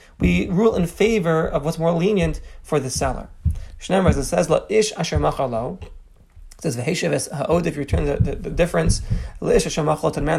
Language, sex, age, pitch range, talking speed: English, male, 30-49, 150-190 Hz, 185 wpm